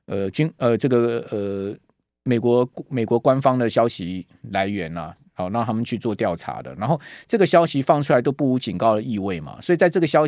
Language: Chinese